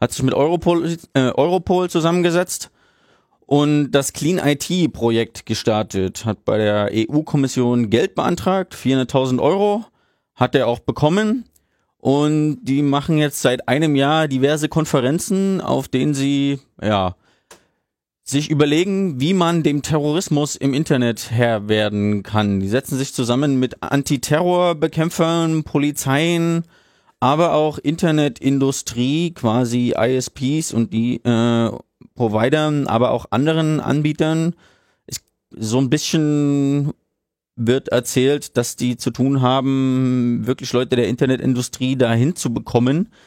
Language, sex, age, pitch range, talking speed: German, male, 30-49, 125-155 Hz, 115 wpm